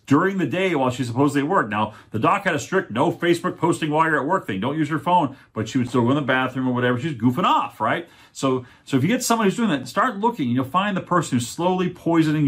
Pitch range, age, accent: 105-150 Hz, 40-59, American